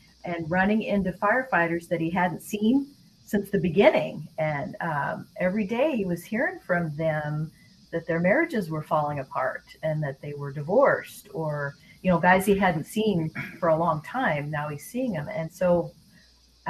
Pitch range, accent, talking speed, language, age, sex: 165-220 Hz, American, 175 wpm, English, 40-59, female